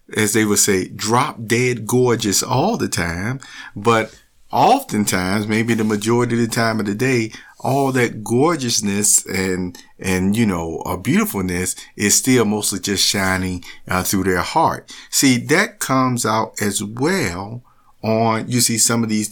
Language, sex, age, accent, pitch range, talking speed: English, male, 50-69, American, 100-130 Hz, 160 wpm